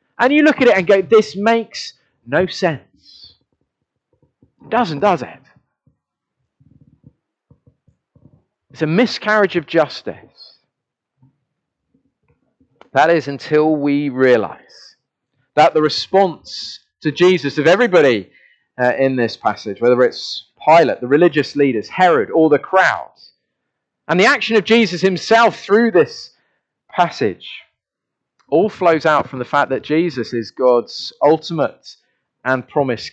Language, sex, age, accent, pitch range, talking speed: English, male, 30-49, British, 140-215 Hz, 125 wpm